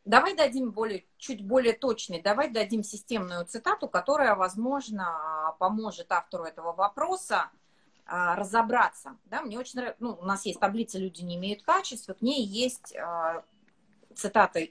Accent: native